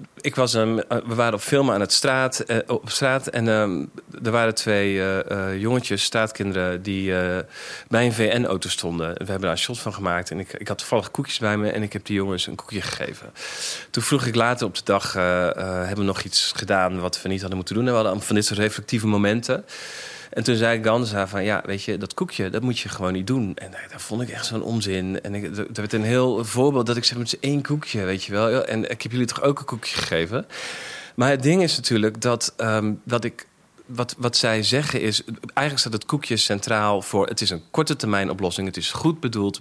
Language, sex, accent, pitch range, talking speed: Dutch, male, Dutch, 95-120 Hz, 230 wpm